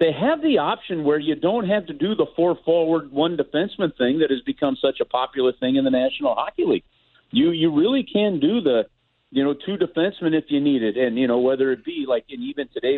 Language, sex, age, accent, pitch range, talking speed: English, male, 50-69, American, 110-145 Hz, 240 wpm